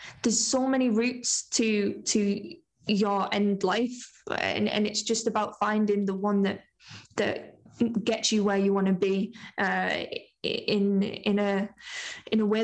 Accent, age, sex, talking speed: British, 10-29, female, 155 wpm